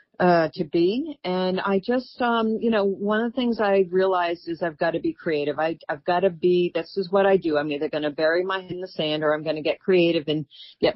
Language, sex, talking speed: English, female, 270 wpm